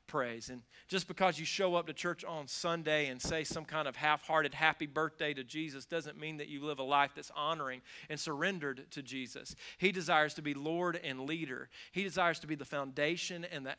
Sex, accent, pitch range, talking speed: male, American, 135-160 Hz, 215 wpm